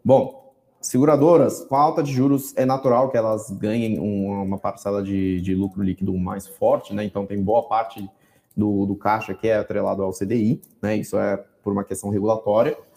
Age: 20-39